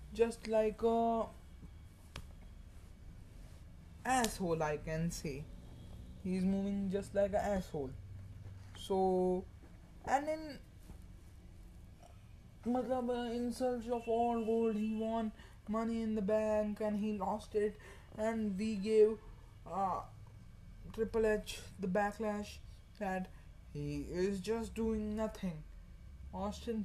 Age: 20-39